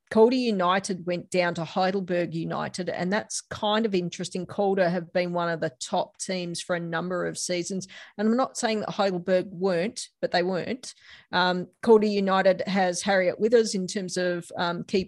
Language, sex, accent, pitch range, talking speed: English, female, Australian, 180-200 Hz, 185 wpm